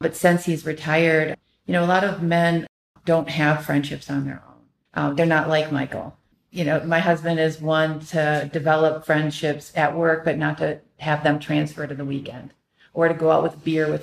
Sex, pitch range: female, 150-170 Hz